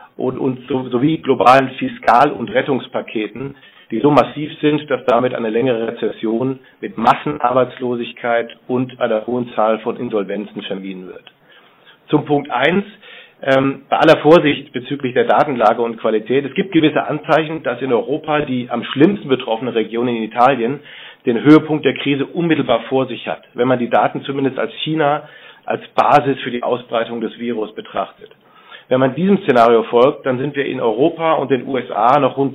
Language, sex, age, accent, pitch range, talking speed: German, male, 50-69, German, 120-145 Hz, 165 wpm